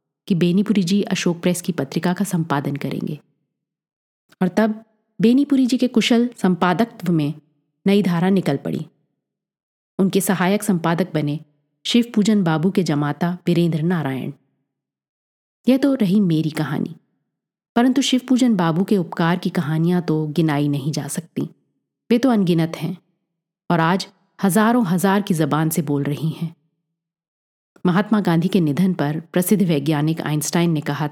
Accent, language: native, Hindi